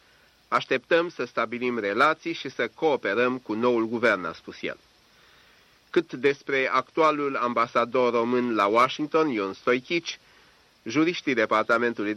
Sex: male